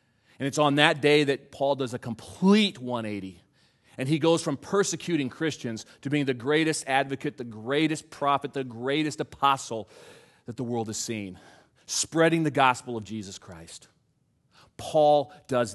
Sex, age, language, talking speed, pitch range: male, 40-59, English, 155 wpm, 125-165 Hz